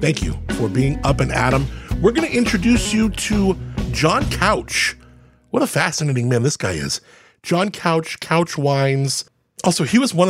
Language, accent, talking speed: English, American, 175 wpm